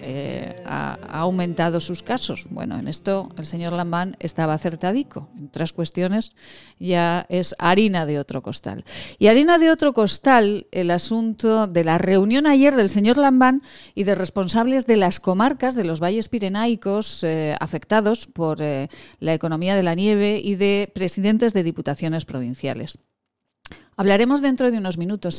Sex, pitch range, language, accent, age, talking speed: female, 170-215 Hz, Spanish, Spanish, 40-59, 160 wpm